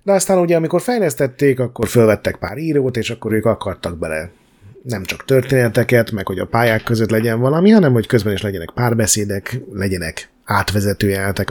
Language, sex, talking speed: Hungarian, male, 165 wpm